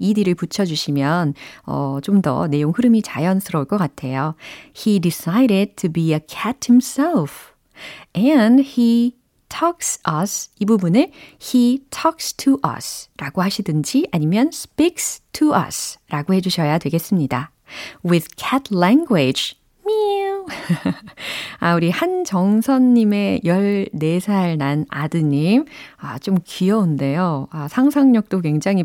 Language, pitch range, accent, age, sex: Korean, 155-230 Hz, native, 40-59, female